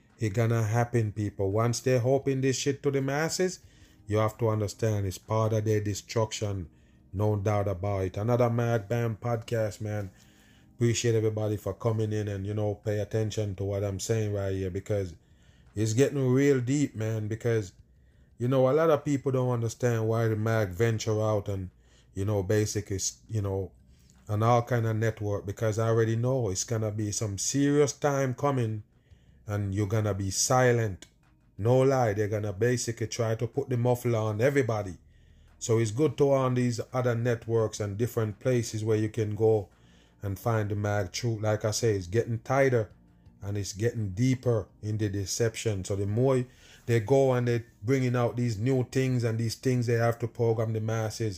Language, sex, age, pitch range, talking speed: English, male, 30-49, 105-125 Hz, 185 wpm